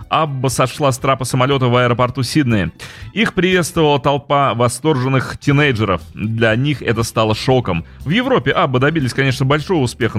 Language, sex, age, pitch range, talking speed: Russian, male, 30-49, 115-145 Hz, 145 wpm